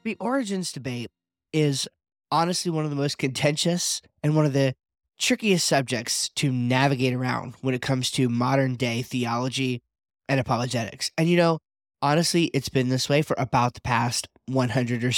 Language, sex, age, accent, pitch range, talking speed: English, male, 20-39, American, 125-165 Hz, 160 wpm